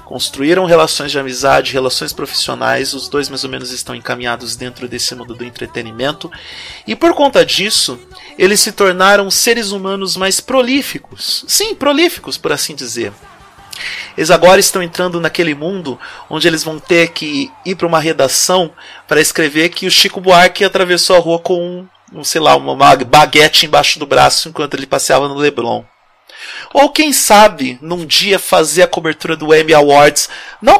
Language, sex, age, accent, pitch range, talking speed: Portuguese, male, 40-59, Brazilian, 150-195 Hz, 165 wpm